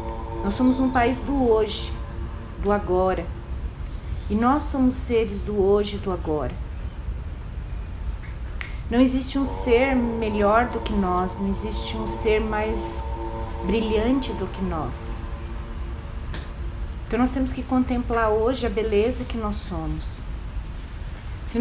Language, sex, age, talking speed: Portuguese, female, 30-49, 130 wpm